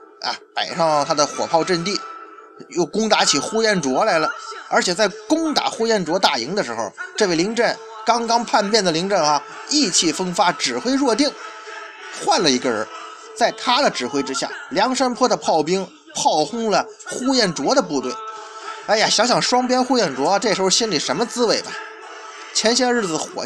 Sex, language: male, Chinese